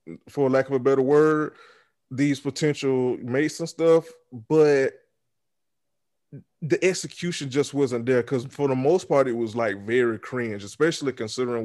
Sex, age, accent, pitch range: male, 20-39, American, 115-145 Hz